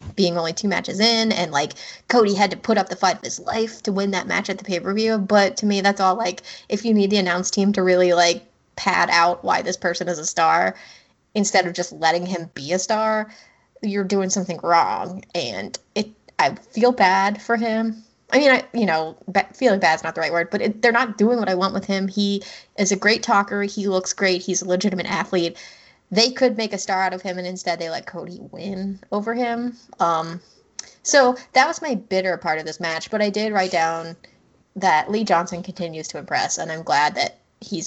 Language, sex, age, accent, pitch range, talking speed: English, female, 20-39, American, 180-225 Hz, 225 wpm